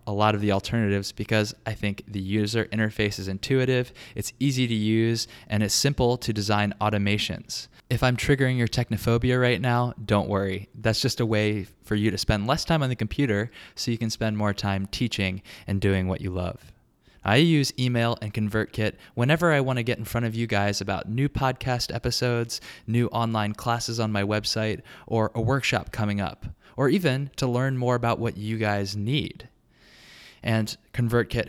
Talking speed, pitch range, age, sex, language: 190 wpm, 100-120 Hz, 20-39, male, English